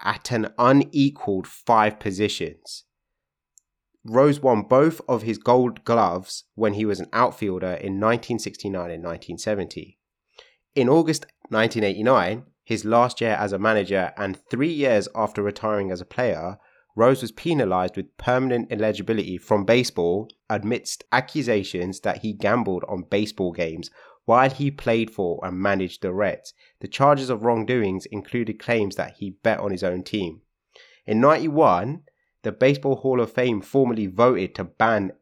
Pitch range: 100-120 Hz